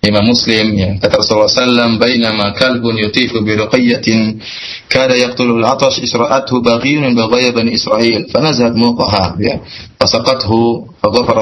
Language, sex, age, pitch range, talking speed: Malay, male, 20-39, 110-145 Hz, 150 wpm